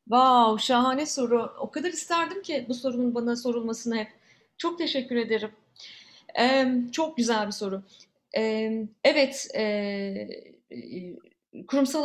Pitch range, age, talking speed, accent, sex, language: 200-255 Hz, 30-49, 125 wpm, native, female, Turkish